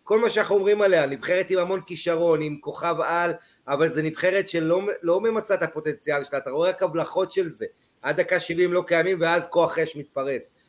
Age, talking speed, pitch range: 30-49, 200 wpm, 145-180 Hz